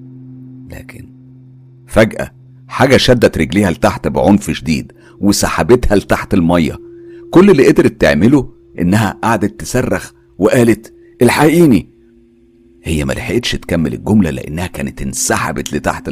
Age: 50-69